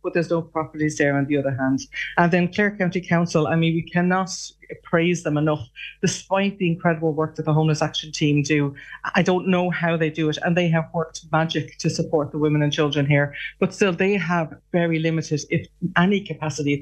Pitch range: 150-175 Hz